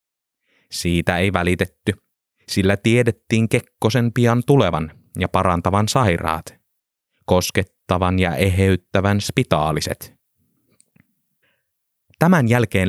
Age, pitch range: 20-39, 90-120 Hz